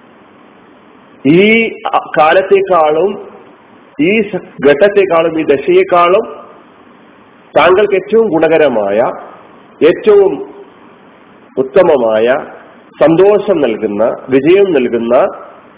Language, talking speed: Malayalam, 55 wpm